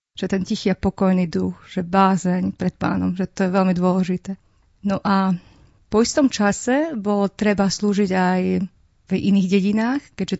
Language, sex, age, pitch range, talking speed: Slovak, female, 30-49, 190-210 Hz, 160 wpm